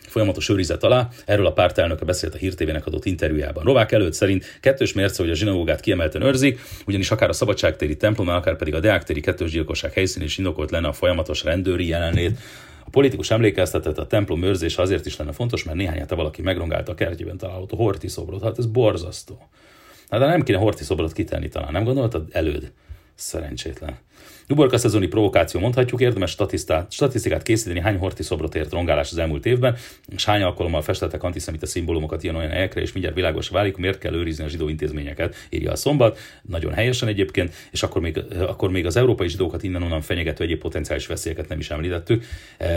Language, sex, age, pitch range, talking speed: Hungarian, male, 40-59, 80-105 Hz, 185 wpm